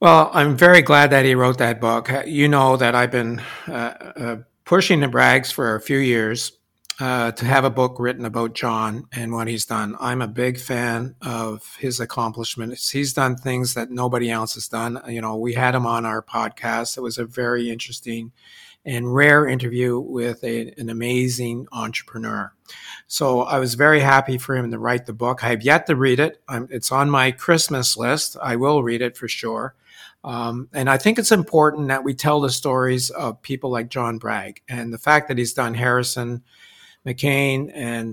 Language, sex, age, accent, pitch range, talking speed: English, male, 50-69, American, 115-135 Hz, 195 wpm